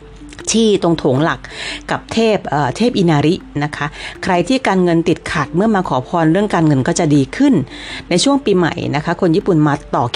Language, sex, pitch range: Thai, female, 150-210 Hz